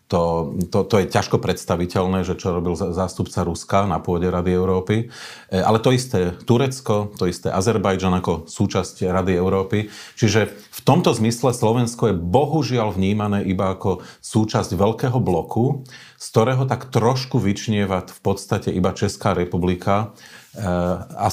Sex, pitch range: male, 90-115 Hz